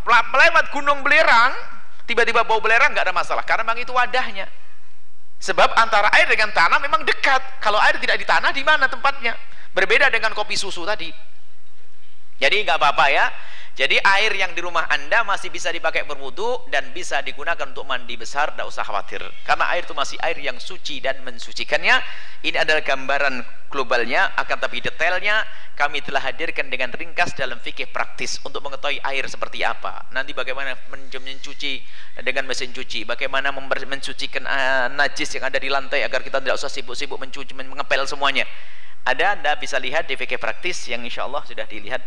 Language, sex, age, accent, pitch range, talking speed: Indonesian, male, 40-59, native, 135-220 Hz, 175 wpm